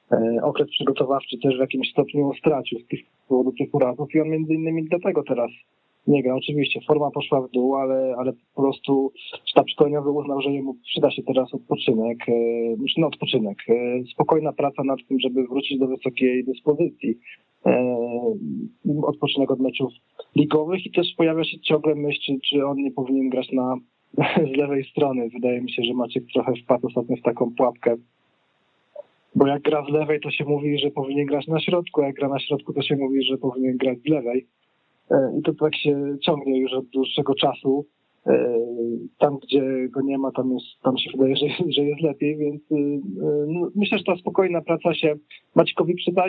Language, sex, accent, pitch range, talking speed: Polish, male, native, 130-150 Hz, 180 wpm